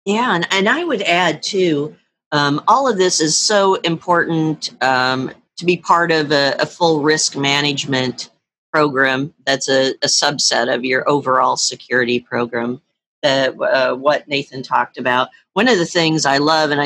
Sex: female